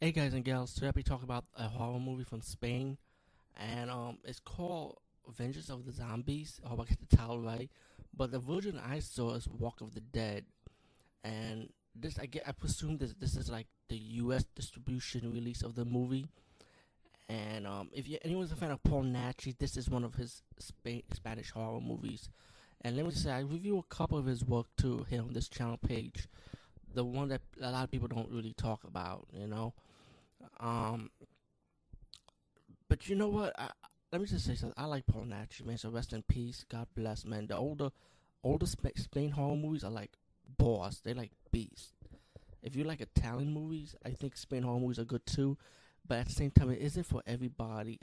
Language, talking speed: English, 205 wpm